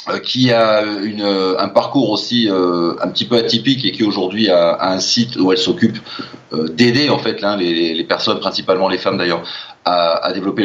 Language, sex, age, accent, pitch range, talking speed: French, male, 40-59, French, 100-130 Hz, 205 wpm